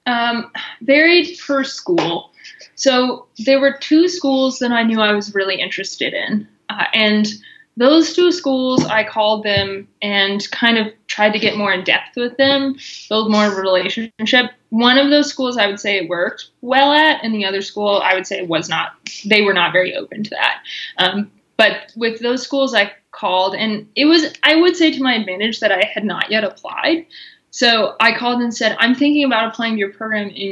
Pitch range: 205-265 Hz